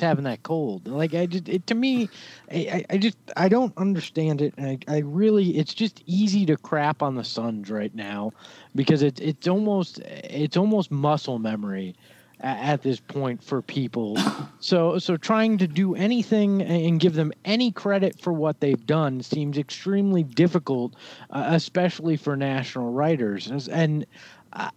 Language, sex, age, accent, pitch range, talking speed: English, male, 30-49, American, 140-190 Hz, 165 wpm